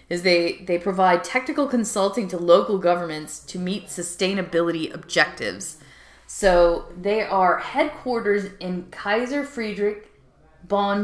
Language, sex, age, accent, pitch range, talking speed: English, female, 20-39, American, 175-220 Hz, 115 wpm